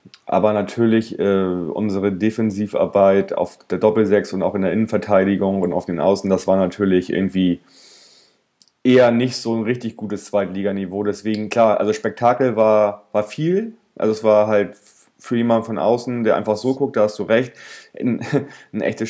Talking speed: 170 wpm